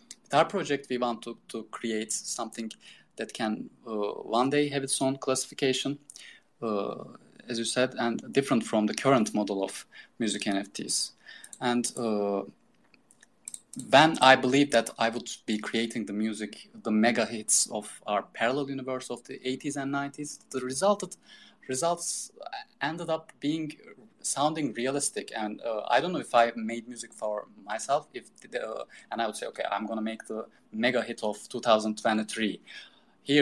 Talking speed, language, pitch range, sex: 160 wpm, English, 110-150 Hz, male